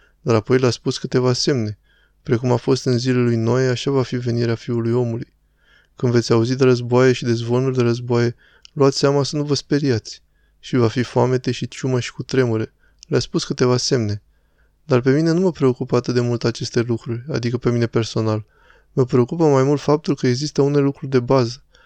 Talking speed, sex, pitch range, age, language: 205 wpm, male, 120-135 Hz, 20-39, Romanian